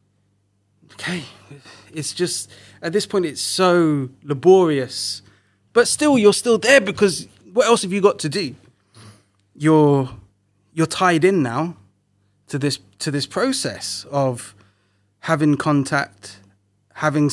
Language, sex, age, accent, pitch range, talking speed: English, male, 20-39, British, 100-145 Hz, 125 wpm